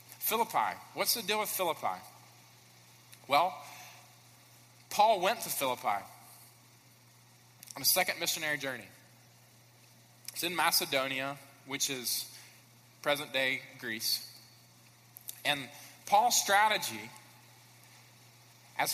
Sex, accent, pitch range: male, American, 120-185 Hz